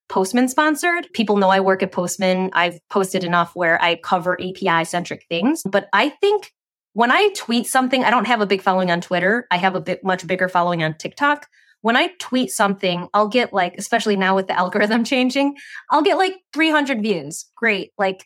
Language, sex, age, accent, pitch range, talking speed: English, female, 20-39, American, 185-245 Hz, 200 wpm